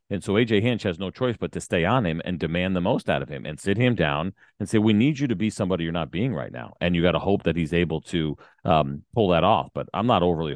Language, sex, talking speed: English, male, 300 wpm